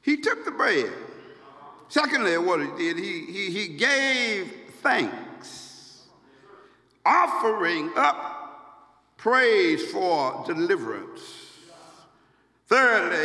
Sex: male